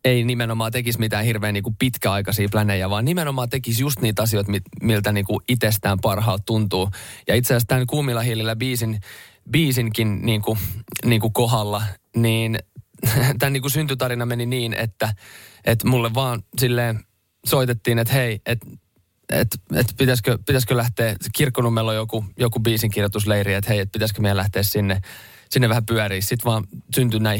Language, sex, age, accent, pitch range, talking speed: Finnish, male, 20-39, native, 105-120 Hz, 155 wpm